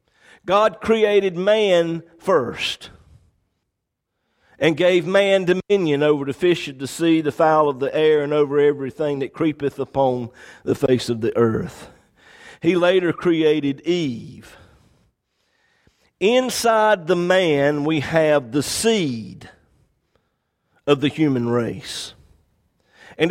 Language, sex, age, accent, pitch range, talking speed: English, male, 50-69, American, 155-215 Hz, 120 wpm